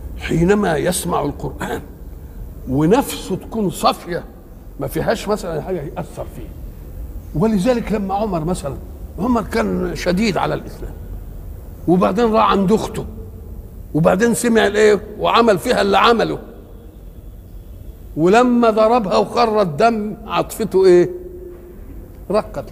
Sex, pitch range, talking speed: male, 145-230 Hz, 105 wpm